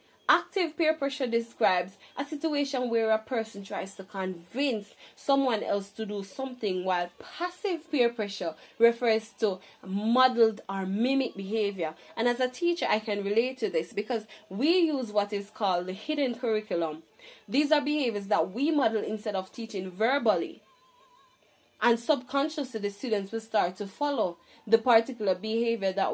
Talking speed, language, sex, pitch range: 155 wpm, English, female, 200-260 Hz